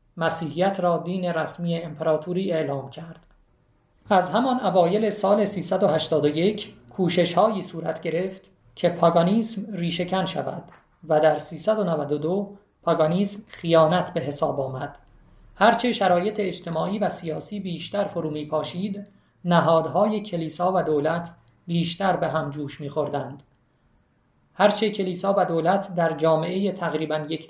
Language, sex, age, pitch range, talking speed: Persian, male, 40-59, 160-195 Hz, 115 wpm